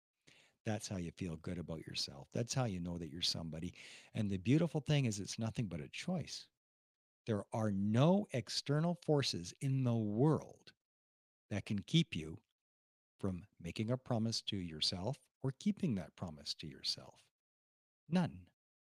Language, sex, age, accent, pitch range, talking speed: English, male, 50-69, American, 95-130 Hz, 155 wpm